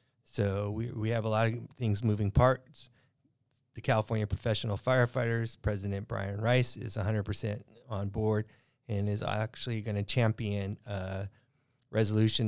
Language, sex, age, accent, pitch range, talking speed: English, male, 30-49, American, 105-125 Hz, 140 wpm